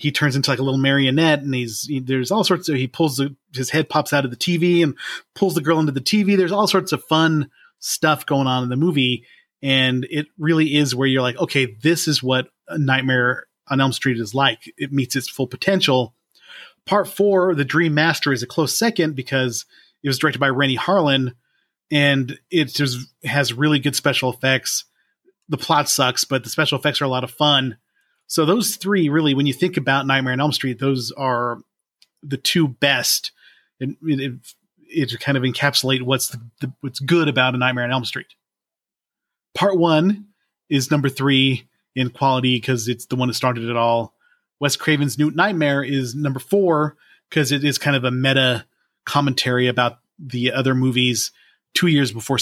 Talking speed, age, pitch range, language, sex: 200 wpm, 30-49, 130-155 Hz, English, male